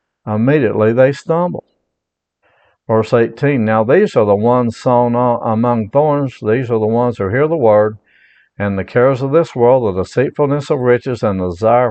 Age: 60-79